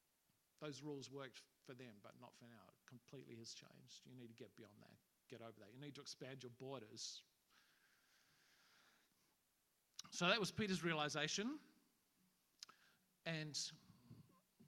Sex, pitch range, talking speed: male, 115-140 Hz, 140 wpm